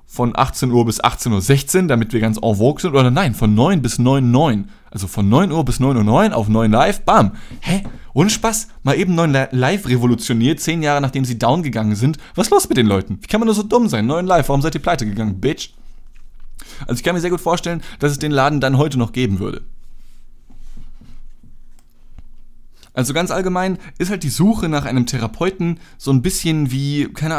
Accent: German